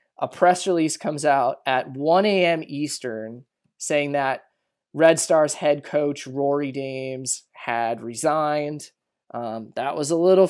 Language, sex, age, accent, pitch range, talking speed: English, male, 20-39, American, 140-165 Hz, 135 wpm